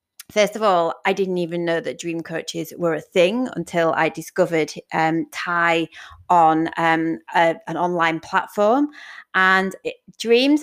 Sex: female